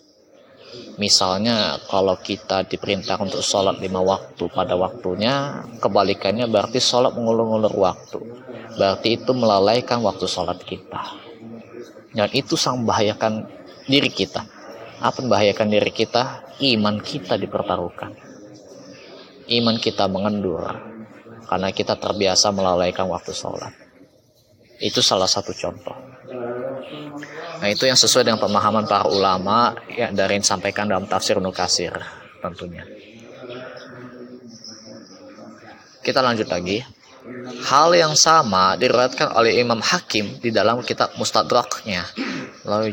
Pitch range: 100-120 Hz